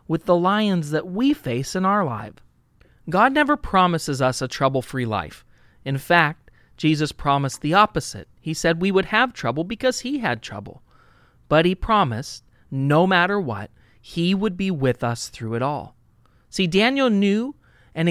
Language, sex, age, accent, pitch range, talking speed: English, male, 40-59, American, 125-200 Hz, 165 wpm